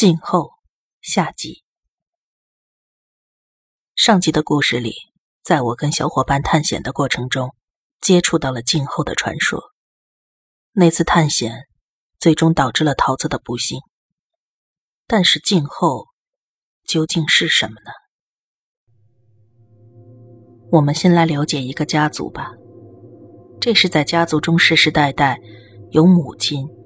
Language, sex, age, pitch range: Chinese, female, 30-49, 120-165 Hz